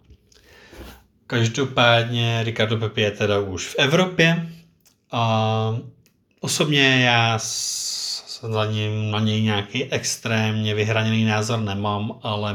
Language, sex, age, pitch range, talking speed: Czech, male, 30-49, 105-125 Hz, 105 wpm